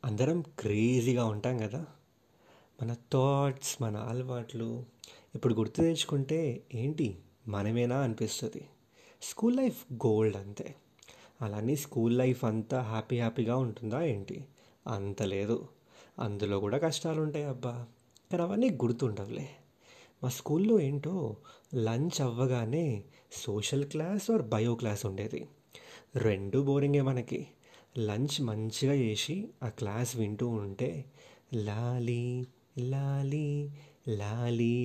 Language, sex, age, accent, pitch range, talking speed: Telugu, male, 30-49, native, 115-145 Hz, 100 wpm